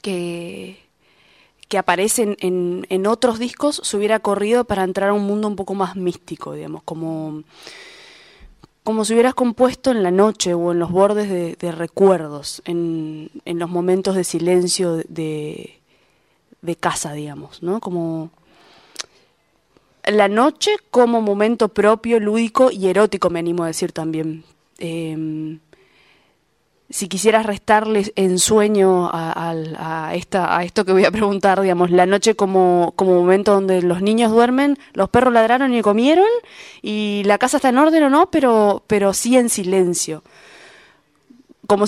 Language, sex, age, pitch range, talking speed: Spanish, female, 20-39, 175-225 Hz, 150 wpm